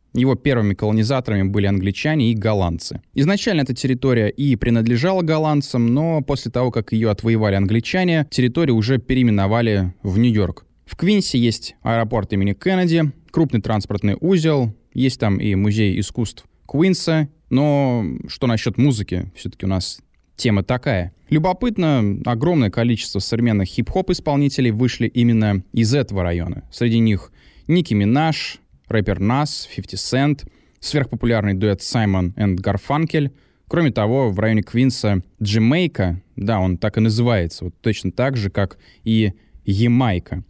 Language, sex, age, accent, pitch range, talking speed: Russian, male, 20-39, native, 105-140 Hz, 135 wpm